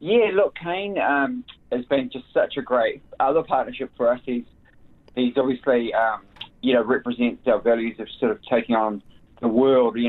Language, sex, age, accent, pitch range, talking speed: English, male, 20-39, Australian, 105-125 Hz, 185 wpm